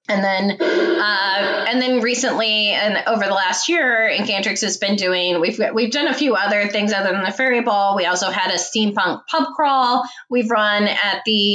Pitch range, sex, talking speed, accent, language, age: 185-235 Hz, female, 195 wpm, American, English, 20-39